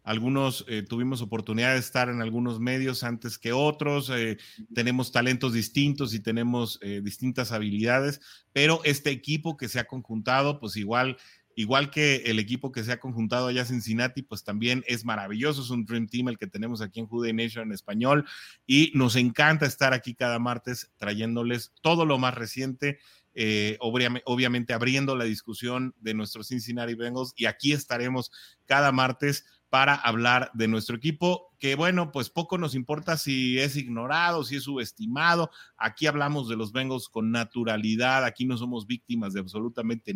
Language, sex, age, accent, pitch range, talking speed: English, male, 30-49, Mexican, 115-135 Hz, 170 wpm